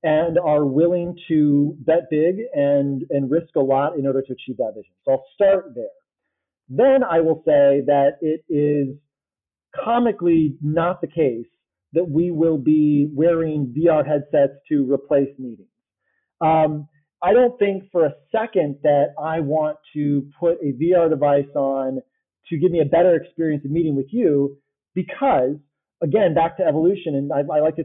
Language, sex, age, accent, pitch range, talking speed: English, male, 30-49, American, 145-180 Hz, 170 wpm